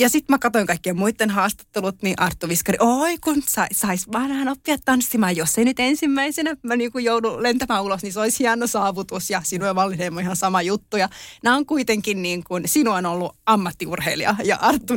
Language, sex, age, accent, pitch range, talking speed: Finnish, female, 30-49, native, 175-225 Hz, 195 wpm